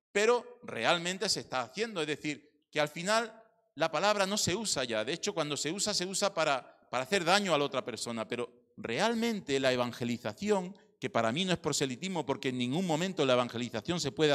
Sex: male